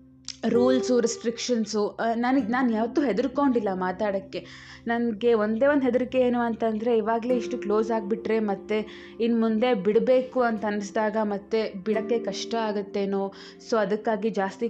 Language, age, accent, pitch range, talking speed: Kannada, 20-39, native, 195-235 Hz, 120 wpm